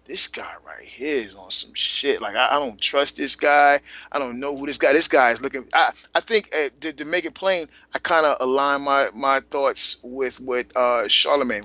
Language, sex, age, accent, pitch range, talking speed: English, male, 30-49, American, 130-165 Hz, 230 wpm